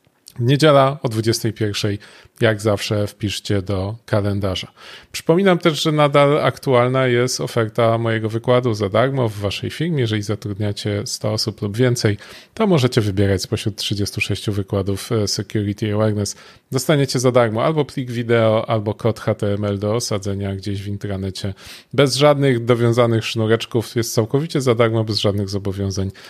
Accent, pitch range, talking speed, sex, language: native, 100-125 Hz, 140 wpm, male, Polish